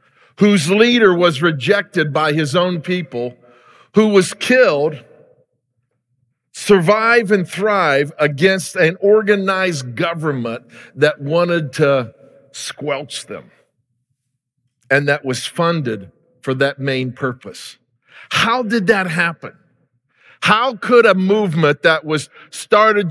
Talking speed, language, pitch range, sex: 110 wpm, English, 145-205 Hz, male